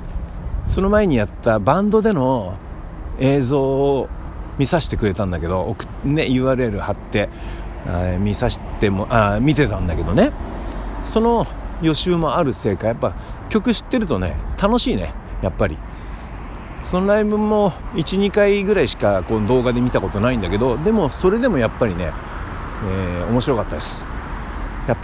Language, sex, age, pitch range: Japanese, male, 60-79, 90-135 Hz